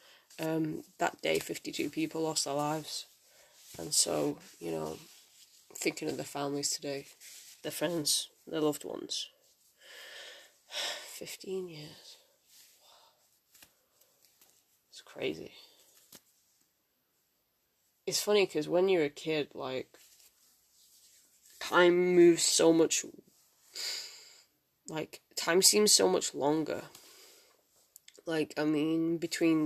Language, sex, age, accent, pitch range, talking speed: English, female, 20-39, British, 155-195 Hz, 95 wpm